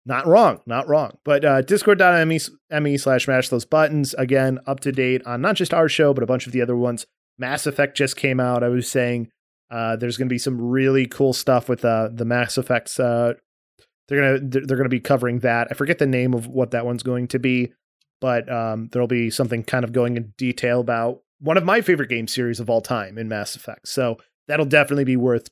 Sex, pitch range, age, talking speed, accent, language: male, 120-140 Hz, 30-49, 230 wpm, American, English